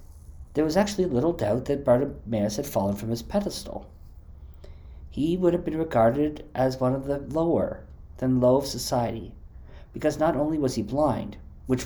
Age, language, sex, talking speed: 50-69, English, male, 165 wpm